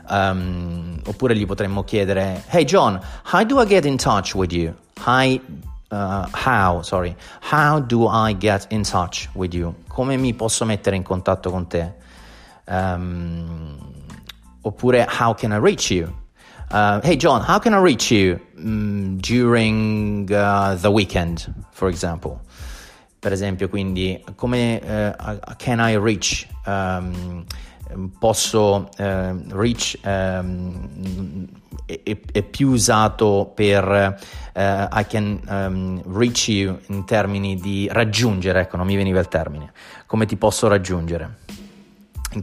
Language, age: Italian, 30-49